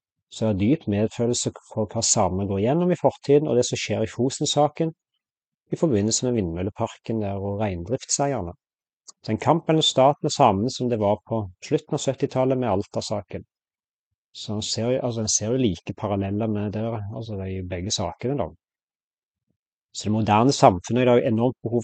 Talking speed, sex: 170 wpm, male